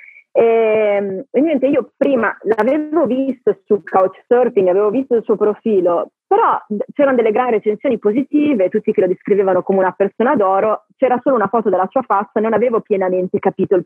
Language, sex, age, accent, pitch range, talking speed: Italian, female, 30-49, native, 185-255 Hz, 170 wpm